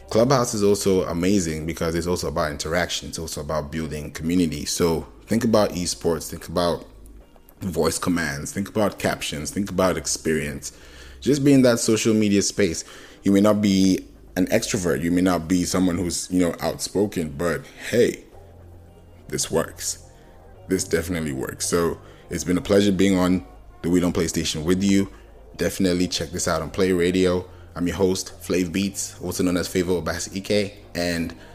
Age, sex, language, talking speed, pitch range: 20-39, male, English, 170 wpm, 80-95 Hz